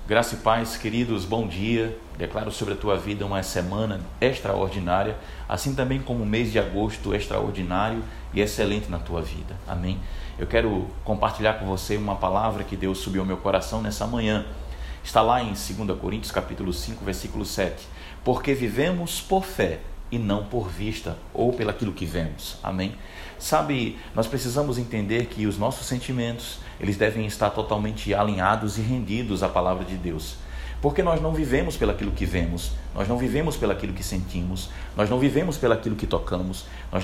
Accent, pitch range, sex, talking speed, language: Brazilian, 95-120 Hz, male, 175 wpm, Portuguese